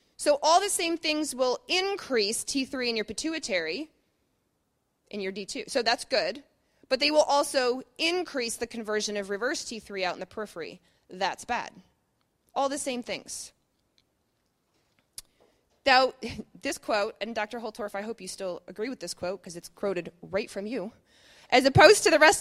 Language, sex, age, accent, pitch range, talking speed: English, female, 20-39, American, 210-295 Hz, 165 wpm